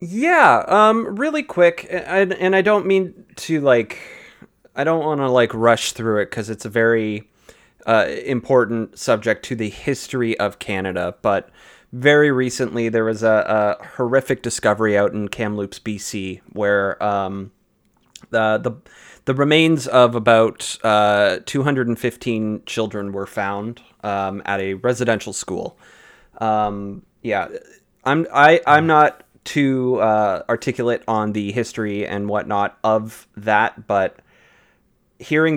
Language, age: English, 30-49